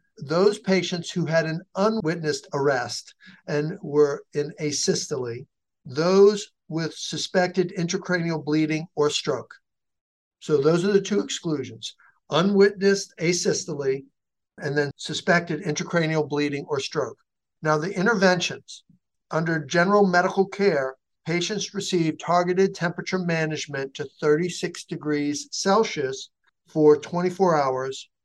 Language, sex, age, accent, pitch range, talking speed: English, male, 60-79, American, 150-185 Hz, 110 wpm